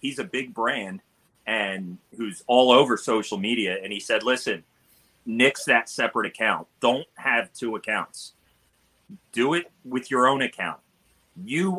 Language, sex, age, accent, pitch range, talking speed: English, male, 30-49, American, 100-135 Hz, 150 wpm